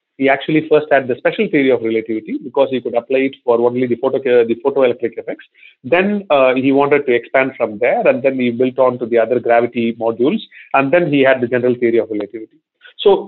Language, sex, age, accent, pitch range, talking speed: English, male, 40-59, Indian, 125-165 Hz, 220 wpm